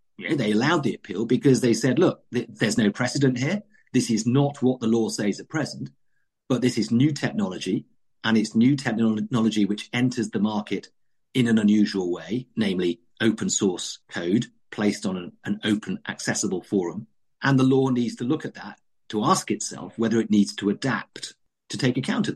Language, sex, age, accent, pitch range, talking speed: English, male, 40-59, British, 105-130 Hz, 185 wpm